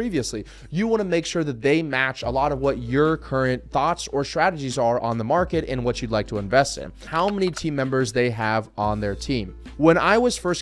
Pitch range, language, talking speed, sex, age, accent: 135-185 Hz, English, 235 wpm, male, 20-39, American